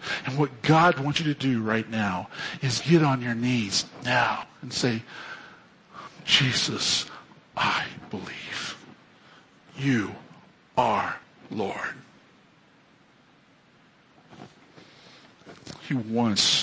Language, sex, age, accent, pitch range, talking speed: English, male, 50-69, American, 125-155 Hz, 90 wpm